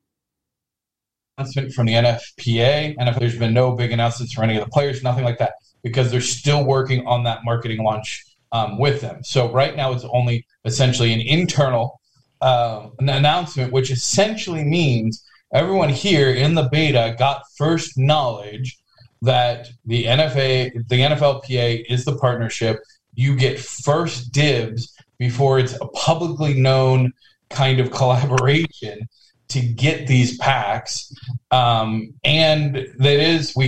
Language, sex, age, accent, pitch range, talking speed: English, male, 20-39, American, 120-135 Hz, 145 wpm